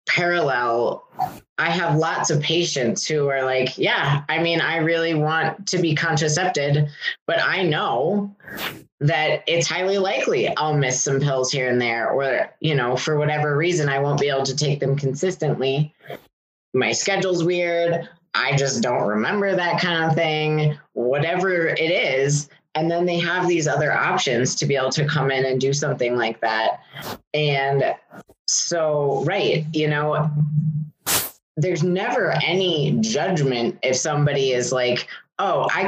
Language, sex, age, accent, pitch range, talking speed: English, female, 20-39, American, 140-170 Hz, 155 wpm